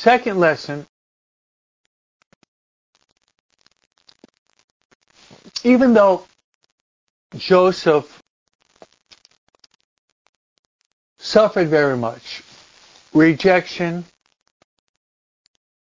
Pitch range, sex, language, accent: 145-185 Hz, male, English, American